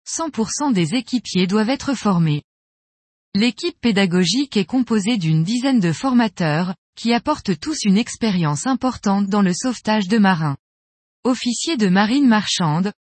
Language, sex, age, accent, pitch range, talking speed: French, female, 20-39, French, 185-245 Hz, 135 wpm